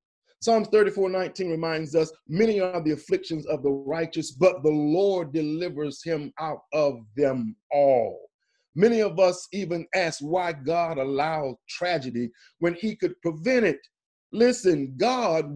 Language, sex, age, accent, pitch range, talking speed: English, male, 40-59, American, 160-205 Hz, 145 wpm